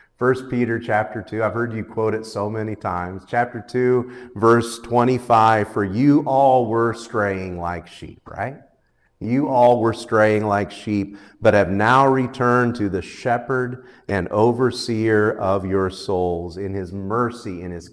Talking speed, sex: 155 wpm, male